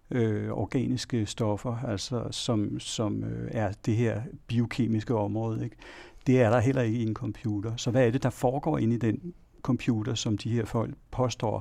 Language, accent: Danish, native